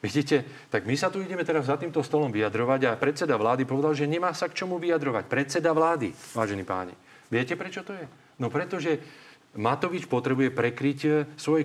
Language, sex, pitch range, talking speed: Slovak, male, 120-155 Hz, 180 wpm